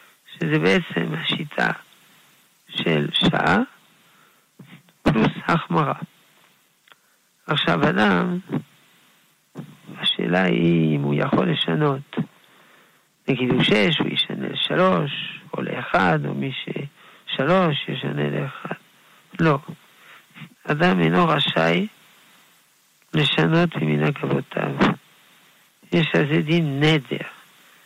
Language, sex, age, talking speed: Hebrew, male, 50-69, 85 wpm